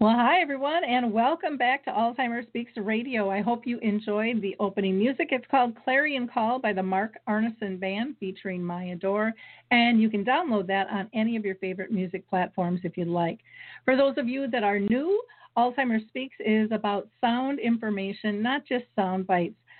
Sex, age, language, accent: female, 40-59, English, American